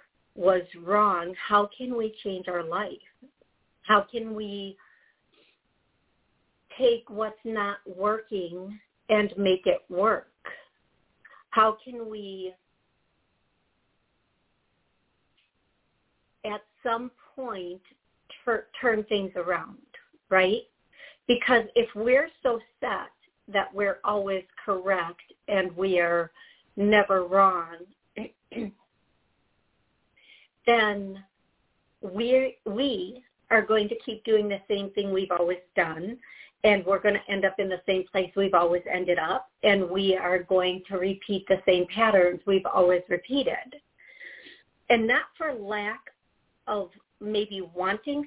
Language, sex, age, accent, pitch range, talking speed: English, female, 50-69, American, 190-235 Hz, 110 wpm